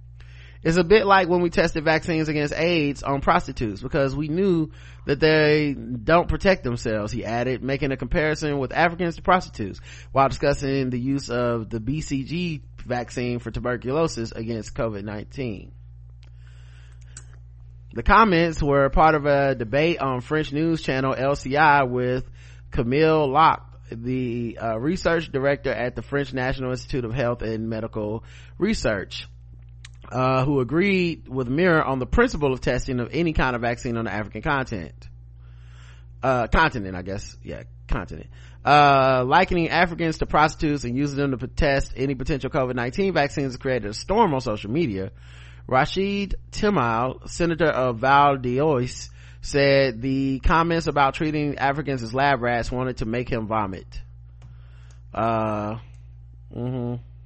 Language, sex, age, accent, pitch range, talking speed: English, male, 30-49, American, 105-145 Hz, 145 wpm